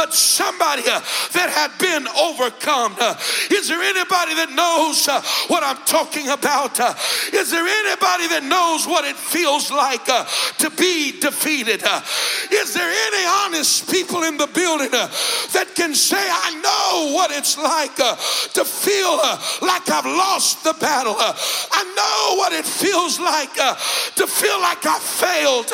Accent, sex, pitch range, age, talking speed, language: American, male, 285-370 Hz, 60-79, 165 wpm, English